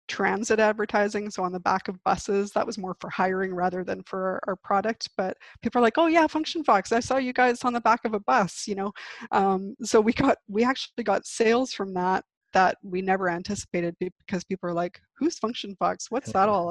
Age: 20-39